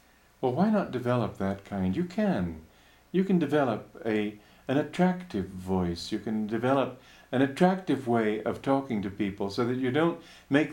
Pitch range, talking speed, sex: 95-140 Hz, 170 wpm, male